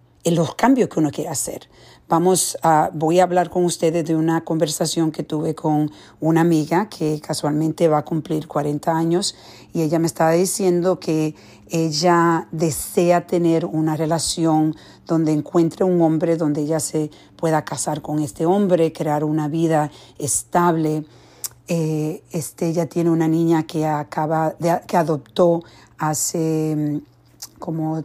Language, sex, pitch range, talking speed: English, female, 155-175 Hz, 150 wpm